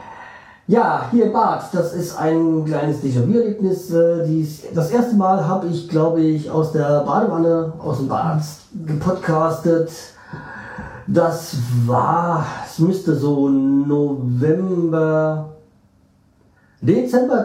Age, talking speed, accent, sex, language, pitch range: 40-59, 110 wpm, German, male, German, 135-175 Hz